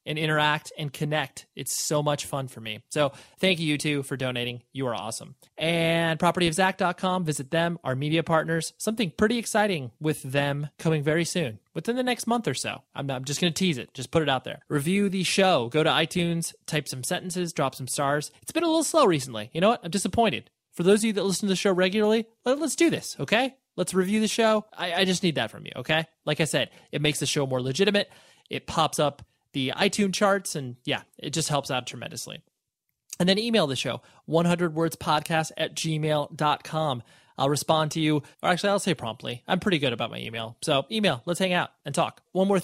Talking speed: 220 wpm